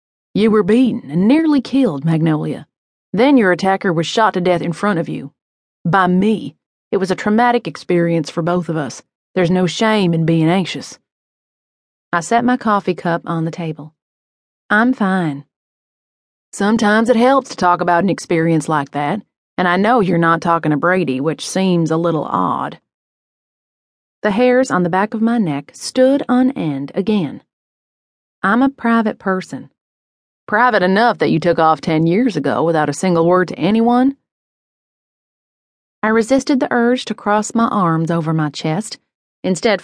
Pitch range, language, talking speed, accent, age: 160-225 Hz, English, 165 wpm, American, 30-49